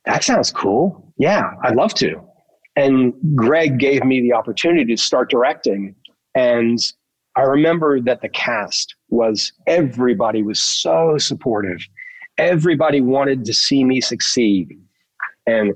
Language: English